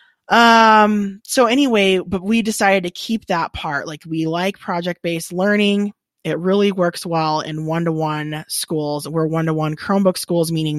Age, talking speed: 20-39, 150 wpm